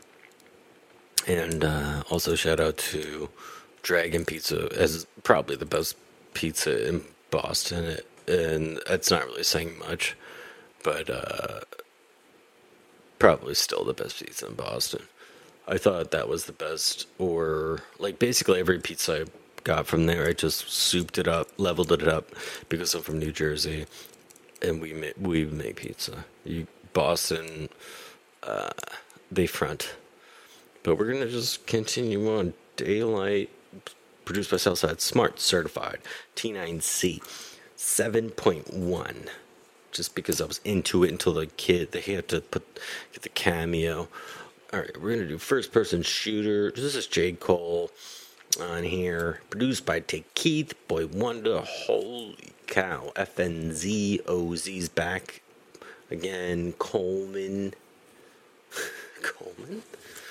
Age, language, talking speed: 30-49, English, 125 wpm